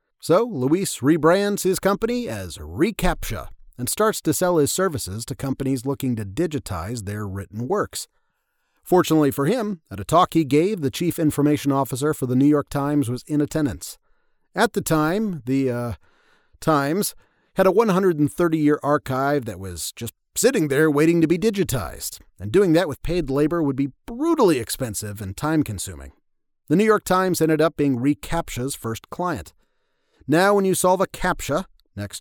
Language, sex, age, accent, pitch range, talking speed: English, male, 40-59, American, 125-170 Hz, 165 wpm